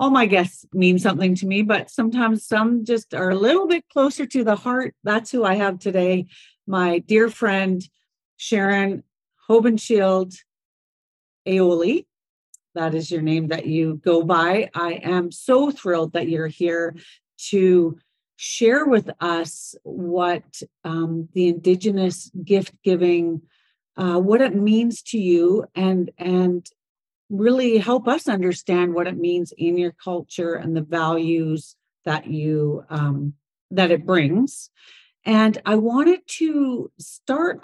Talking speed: 140 wpm